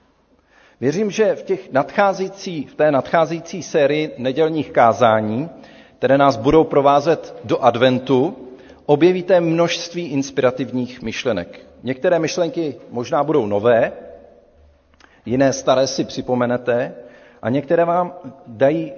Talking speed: 105 wpm